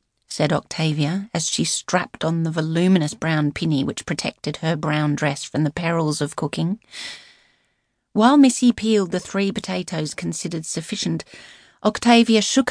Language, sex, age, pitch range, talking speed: English, female, 30-49, 160-215 Hz, 140 wpm